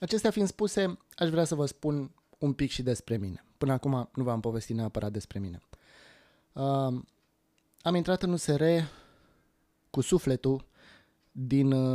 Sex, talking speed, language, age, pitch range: male, 140 wpm, Romanian, 20-39, 110-135 Hz